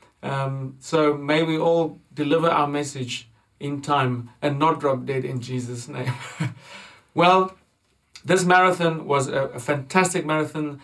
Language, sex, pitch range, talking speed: English, male, 135-170 Hz, 140 wpm